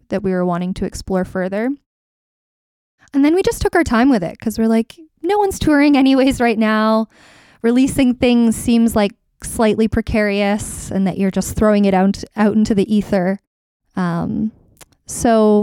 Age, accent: 20-39, American